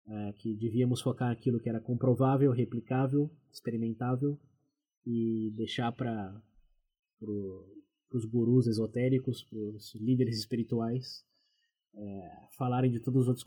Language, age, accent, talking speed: Portuguese, 20-39, Brazilian, 120 wpm